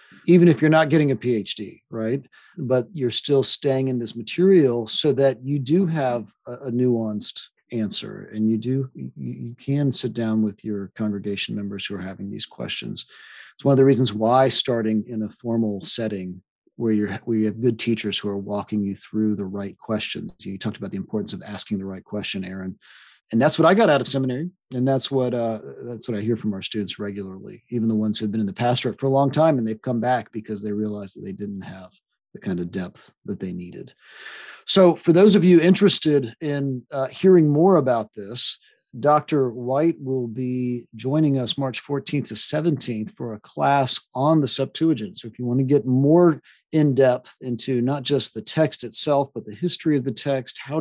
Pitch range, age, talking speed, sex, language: 105-140 Hz, 40-59, 205 wpm, male, English